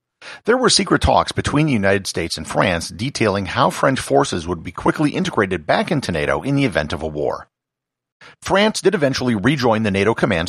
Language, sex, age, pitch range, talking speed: English, male, 50-69, 85-125 Hz, 195 wpm